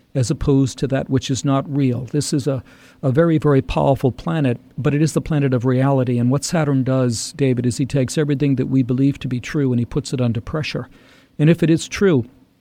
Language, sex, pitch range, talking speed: English, male, 130-145 Hz, 235 wpm